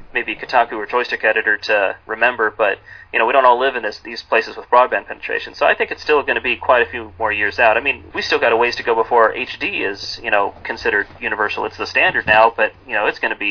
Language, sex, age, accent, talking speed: English, male, 30-49, American, 275 wpm